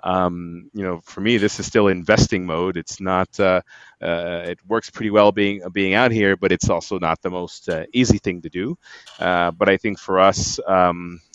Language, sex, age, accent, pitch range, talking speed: English, male, 30-49, American, 90-105 Hz, 210 wpm